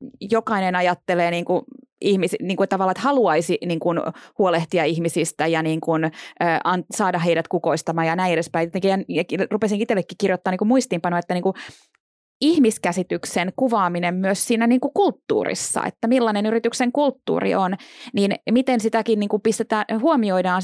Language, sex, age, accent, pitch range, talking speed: Finnish, female, 20-39, native, 185-250 Hz, 140 wpm